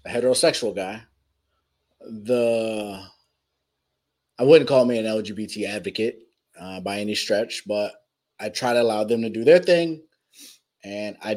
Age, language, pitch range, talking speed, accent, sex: 30-49, English, 115-190 Hz, 145 wpm, American, male